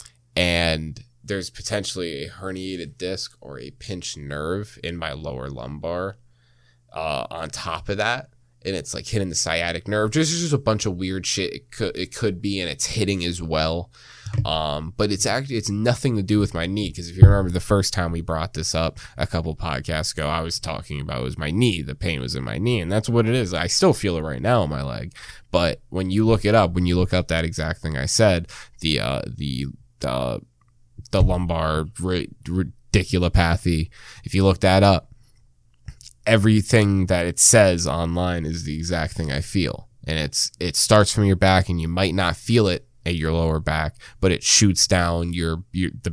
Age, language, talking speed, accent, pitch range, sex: 20-39, English, 210 wpm, American, 80-105 Hz, male